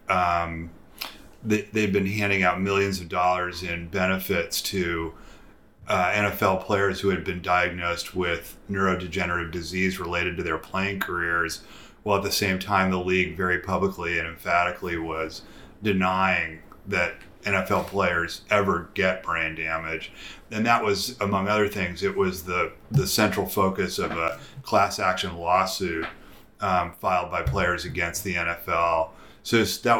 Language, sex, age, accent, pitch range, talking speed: English, male, 30-49, American, 85-100 Hz, 145 wpm